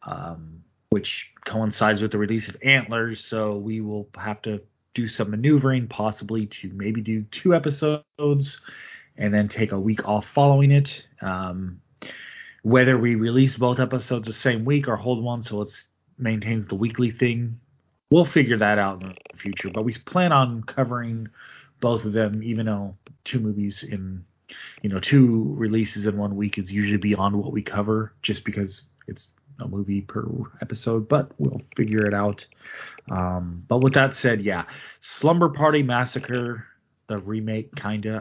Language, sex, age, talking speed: English, male, 30-49, 165 wpm